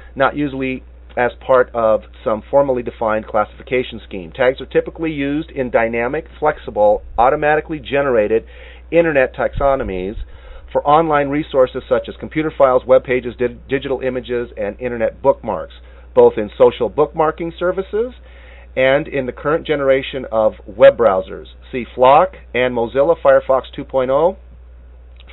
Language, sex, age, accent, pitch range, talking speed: English, male, 40-59, American, 110-155 Hz, 130 wpm